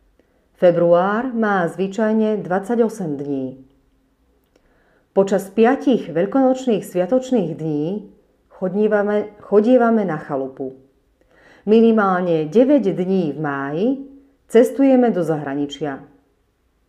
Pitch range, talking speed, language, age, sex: 160-235 Hz, 80 wpm, Slovak, 40-59, female